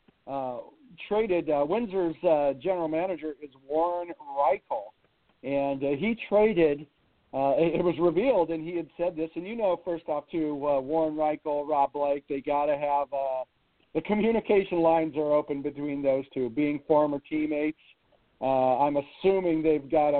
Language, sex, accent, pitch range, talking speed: English, male, American, 145-175 Hz, 160 wpm